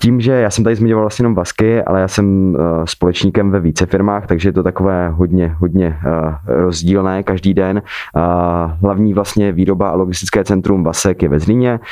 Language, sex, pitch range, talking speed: Czech, male, 85-95 Hz, 175 wpm